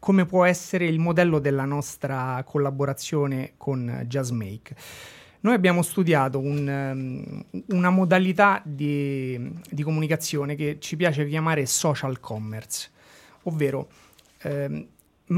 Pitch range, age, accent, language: 135-170 Hz, 30-49, native, Italian